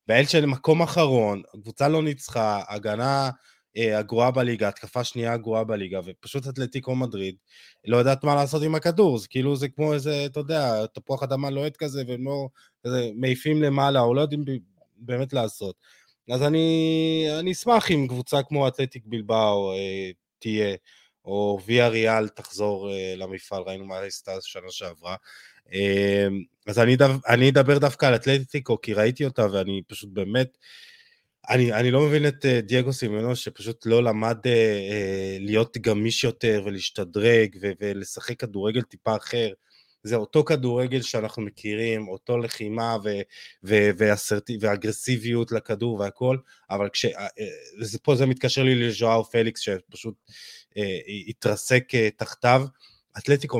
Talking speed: 135 wpm